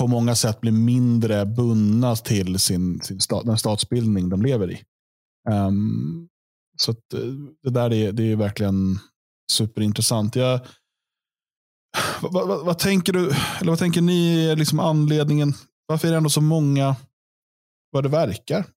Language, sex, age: Swedish, male, 20-39